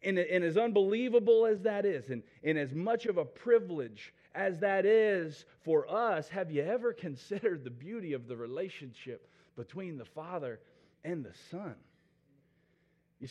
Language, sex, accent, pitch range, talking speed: English, male, American, 150-200 Hz, 150 wpm